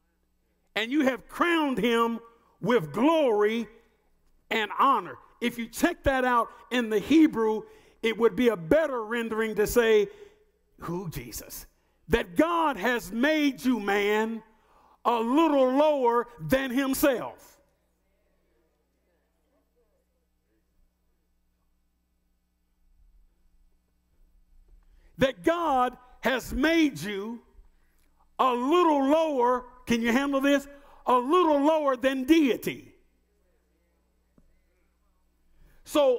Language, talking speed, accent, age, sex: English, 95 wpm, American, 50-69, male